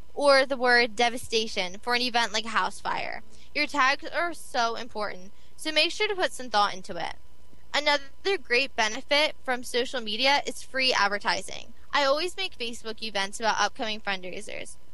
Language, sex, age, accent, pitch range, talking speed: English, female, 10-29, American, 215-280 Hz, 170 wpm